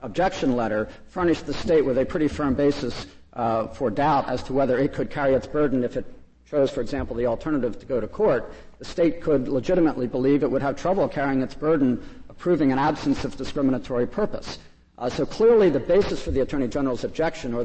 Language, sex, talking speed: English, male, 205 wpm